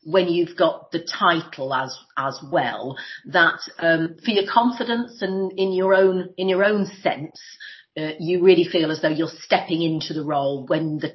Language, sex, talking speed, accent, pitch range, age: English, female, 185 wpm, British, 160-200 Hz, 40-59